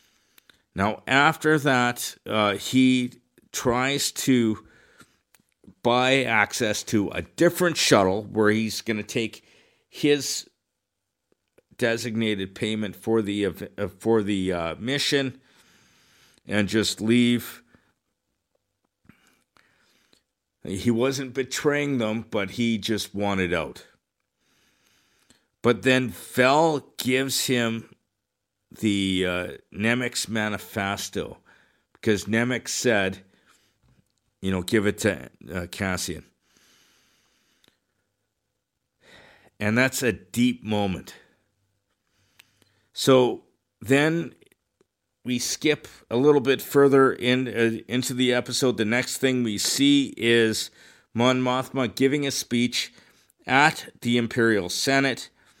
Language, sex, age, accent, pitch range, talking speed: English, male, 50-69, American, 105-130 Hz, 100 wpm